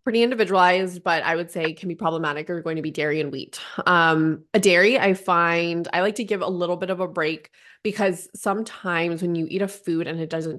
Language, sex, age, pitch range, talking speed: English, female, 20-39, 165-205 Hz, 230 wpm